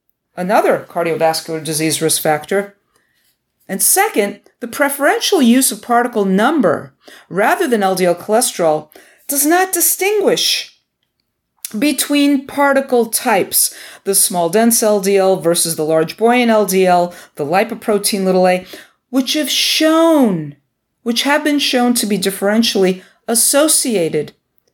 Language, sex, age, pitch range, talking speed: English, female, 50-69, 180-270 Hz, 115 wpm